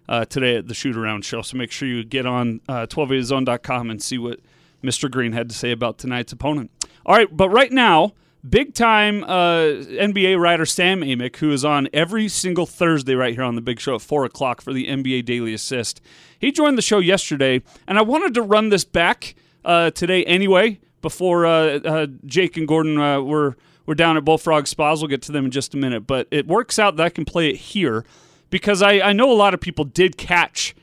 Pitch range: 130-175 Hz